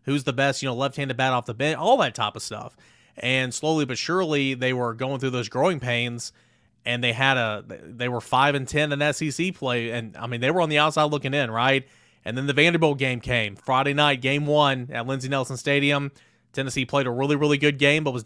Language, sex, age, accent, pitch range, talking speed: English, male, 30-49, American, 120-150 Hz, 235 wpm